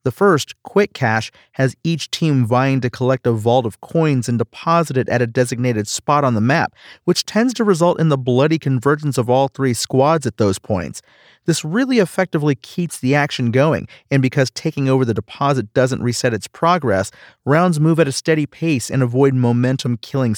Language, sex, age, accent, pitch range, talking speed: English, male, 40-59, American, 120-160 Hz, 190 wpm